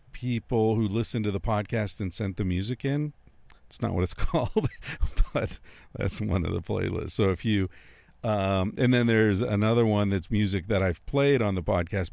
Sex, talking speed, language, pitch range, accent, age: male, 195 wpm, English, 95-120 Hz, American, 50-69